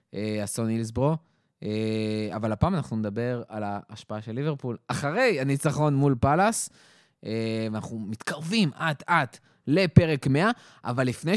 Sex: male